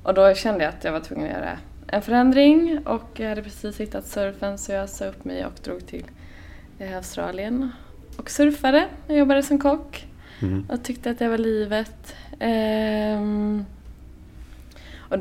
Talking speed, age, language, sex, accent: 160 wpm, 20-39, English, female, Swedish